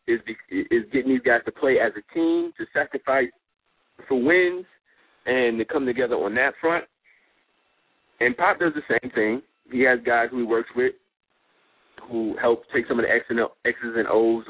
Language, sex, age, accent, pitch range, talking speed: English, male, 30-49, American, 115-190 Hz, 175 wpm